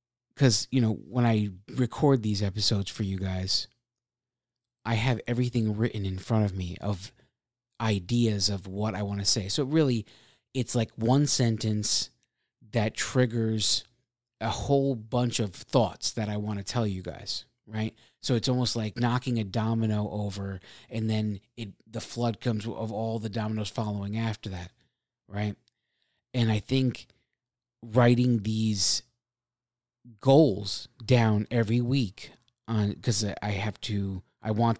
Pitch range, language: 105-120 Hz, English